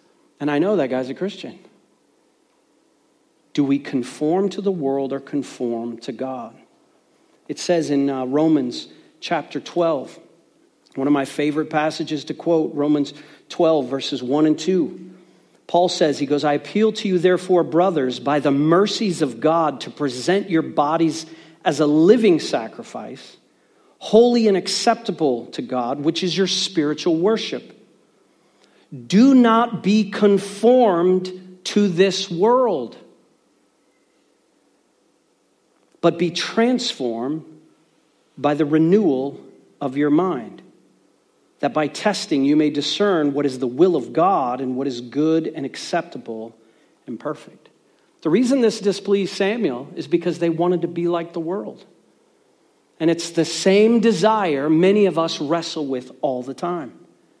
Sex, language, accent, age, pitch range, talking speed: male, English, American, 40-59, 145-190 Hz, 140 wpm